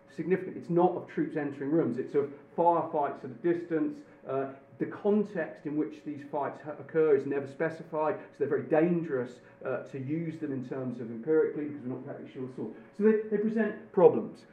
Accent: British